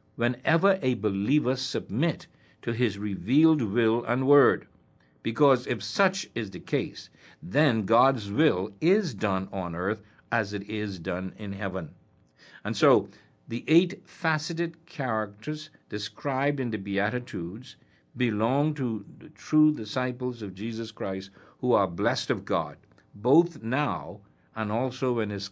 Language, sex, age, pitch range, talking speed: English, male, 60-79, 110-155 Hz, 135 wpm